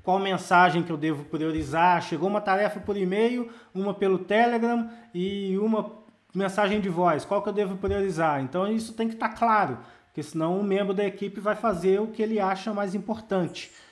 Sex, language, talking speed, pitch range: male, Portuguese, 190 wpm, 185-225 Hz